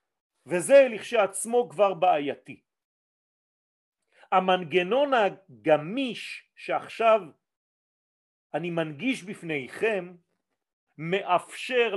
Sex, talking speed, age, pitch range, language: male, 60 wpm, 40-59, 175-240 Hz, French